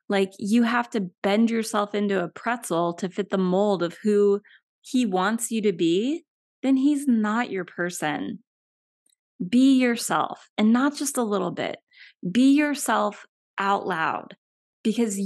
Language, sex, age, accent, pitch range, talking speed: English, female, 20-39, American, 195-250 Hz, 150 wpm